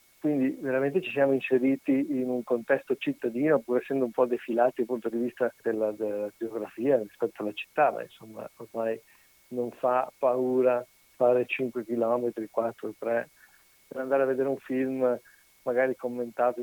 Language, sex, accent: Italian, male, native